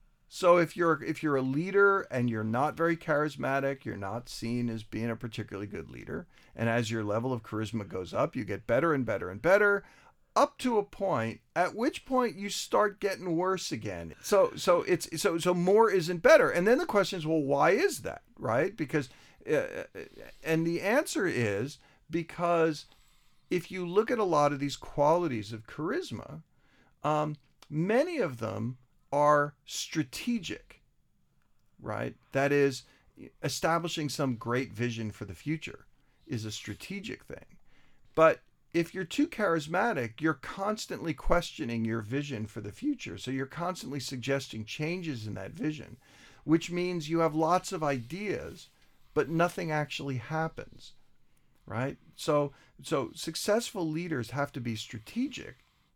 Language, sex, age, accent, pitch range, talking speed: English, male, 50-69, American, 120-180 Hz, 155 wpm